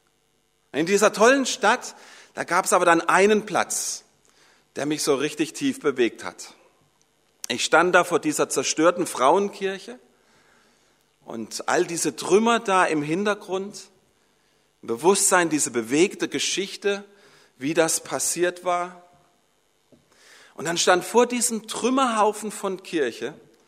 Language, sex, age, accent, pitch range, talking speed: German, male, 40-59, German, 145-210 Hz, 120 wpm